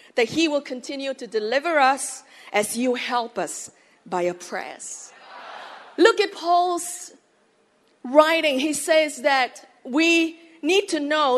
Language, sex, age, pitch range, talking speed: English, female, 40-59, 245-325 Hz, 130 wpm